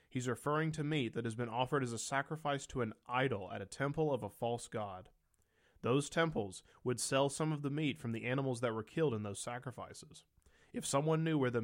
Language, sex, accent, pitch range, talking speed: English, male, American, 115-145 Hz, 220 wpm